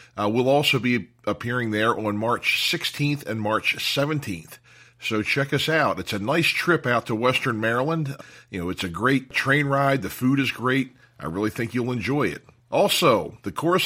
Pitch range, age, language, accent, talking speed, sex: 115-160 Hz, 40-59, English, American, 190 wpm, male